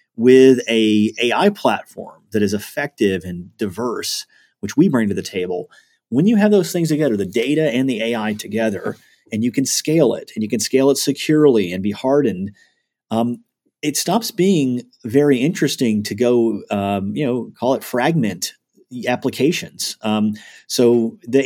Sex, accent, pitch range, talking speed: male, American, 110-145 Hz, 165 wpm